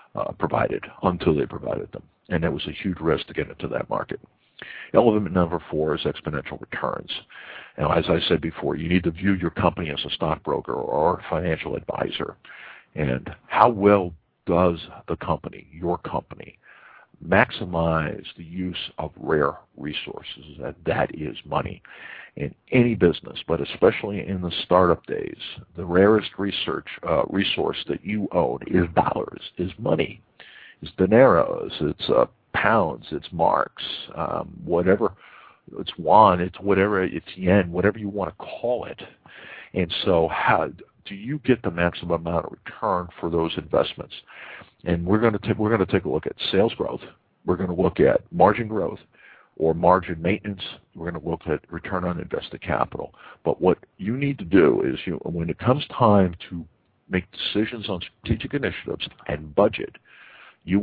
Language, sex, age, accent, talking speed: English, male, 60-79, American, 165 wpm